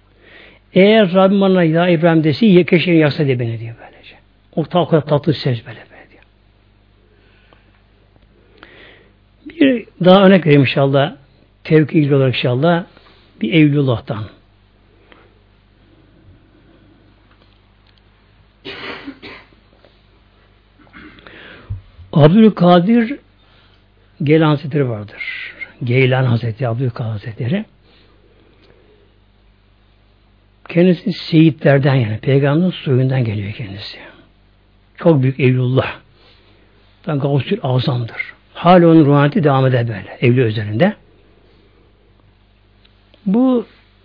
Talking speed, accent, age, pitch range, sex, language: 75 wpm, native, 60-79, 100-160 Hz, male, Turkish